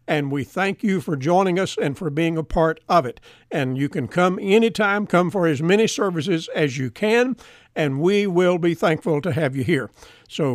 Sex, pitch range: male, 150-190 Hz